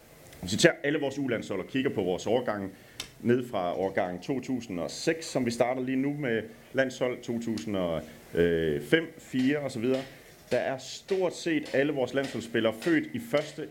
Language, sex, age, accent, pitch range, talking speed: Danish, male, 30-49, native, 120-155 Hz, 145 wpm